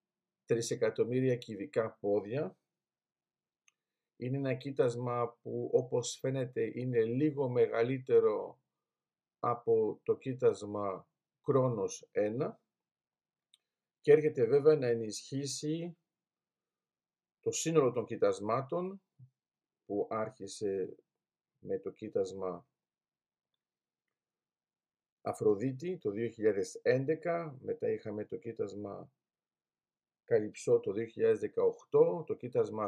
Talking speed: 75 wpm